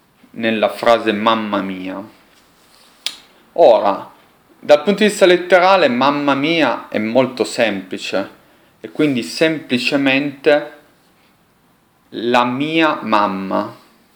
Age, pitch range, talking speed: 40-59, 125-175 Hz, 90 wpm